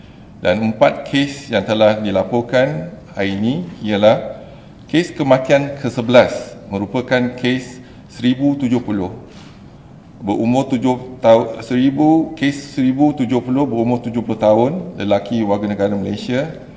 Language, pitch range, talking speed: Malay, 105-125 Hz, 100 wpm